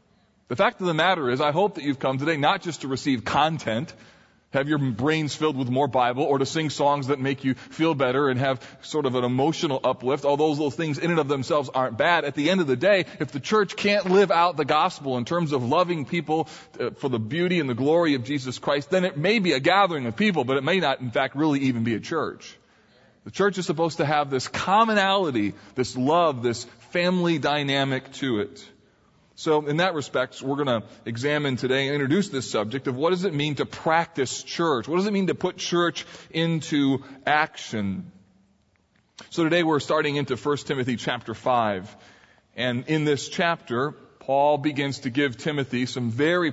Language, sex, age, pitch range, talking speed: English, male, 20-39, 130-165 Hz, 210 wpm